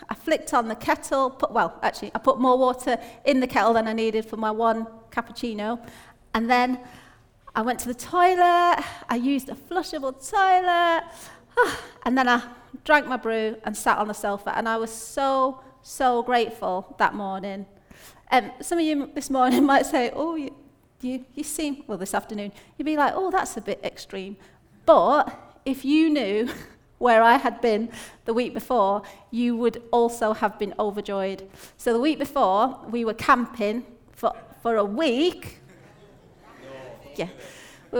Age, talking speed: 30-49, 170 wpm